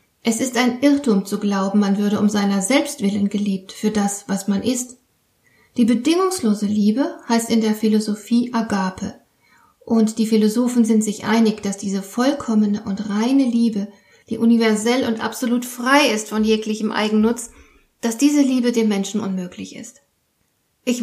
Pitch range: 210-250 Hz